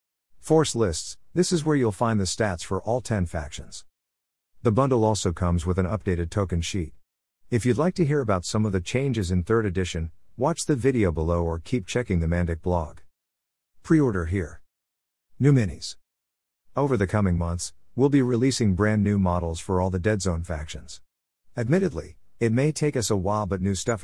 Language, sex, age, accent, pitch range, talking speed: English, male, 50-69, American, 85-115 Hz, 185 wpm